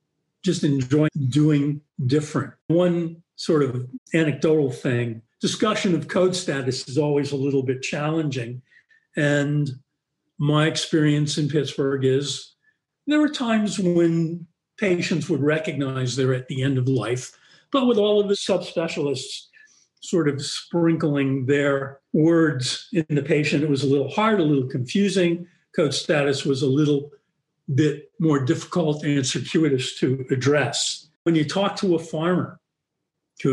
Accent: American